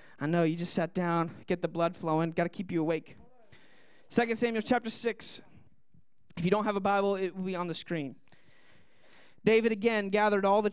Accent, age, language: American, 30-49, English